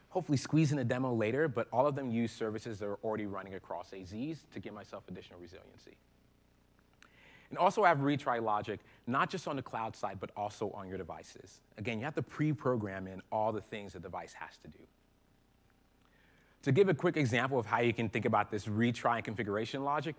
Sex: male